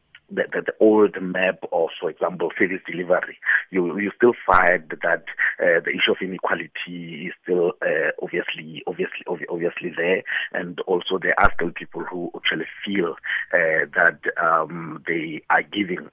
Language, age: English, 50-69